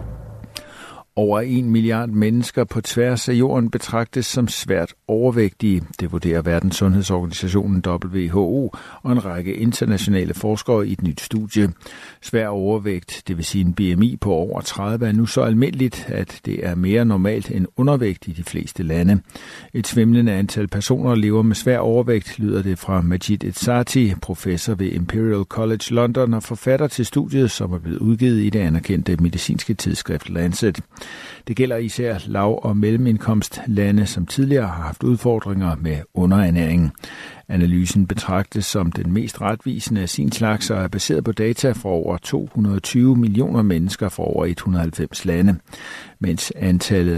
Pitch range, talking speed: 90-115 Hz, 155 wpm